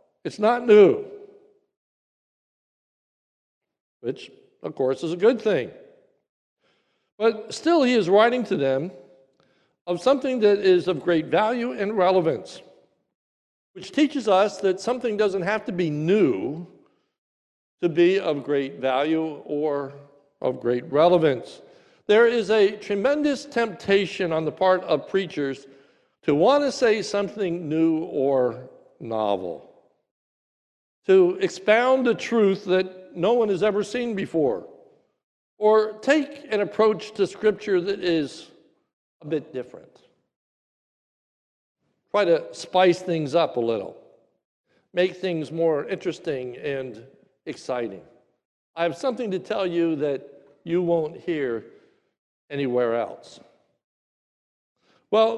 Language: English